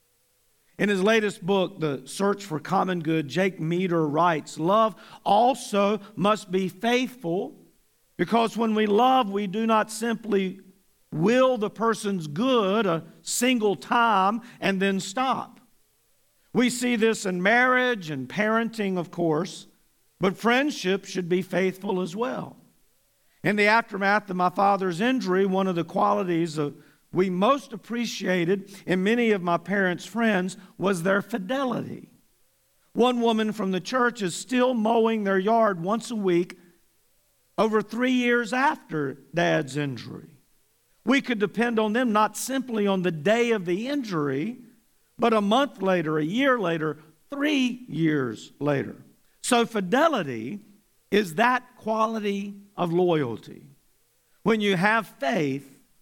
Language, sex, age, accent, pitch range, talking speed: English, male, 50-69, American, 180-230 Hz, 135 wpm